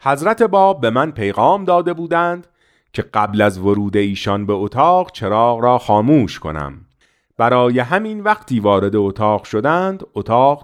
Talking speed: 140 wpm